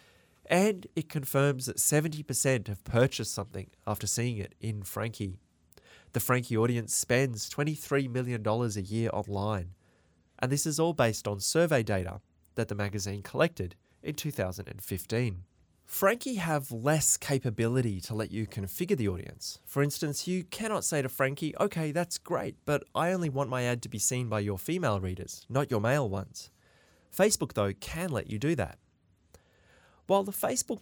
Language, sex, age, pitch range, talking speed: English, male, 20-39, 100-140 Hz, 160 wpm